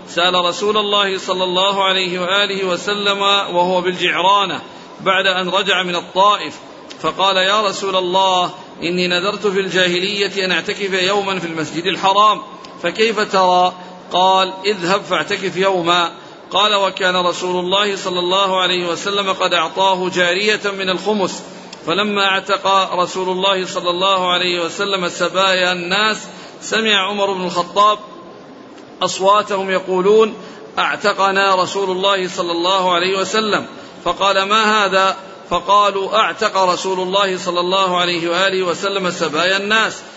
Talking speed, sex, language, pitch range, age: 125 wpm, male, Arabic, 180-200 Hz, 50-69